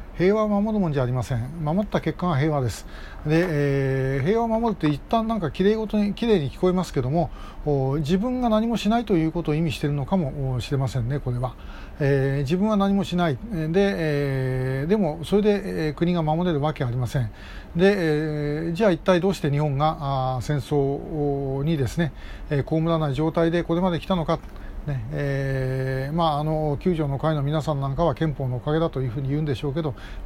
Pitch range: 140-175 Hz